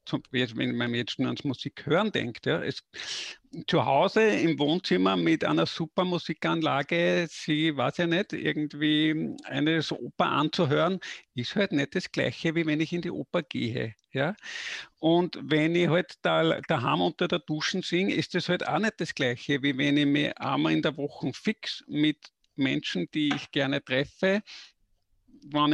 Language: German